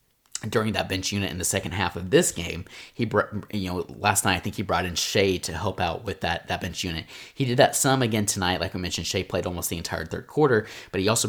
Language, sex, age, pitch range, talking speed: English, male, 20-39, 90-105 Hz, 260 wpm